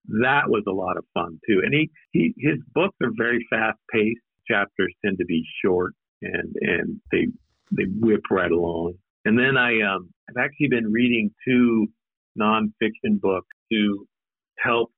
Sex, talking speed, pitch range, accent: male, 165 wpm, 100-125 Hz, American